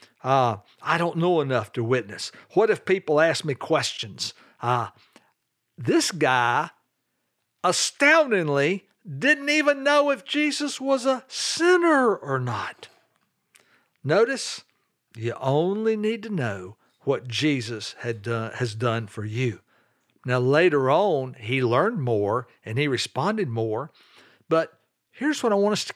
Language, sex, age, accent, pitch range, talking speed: English, male, 60-79, American, 120-185 Hz, 135 wpm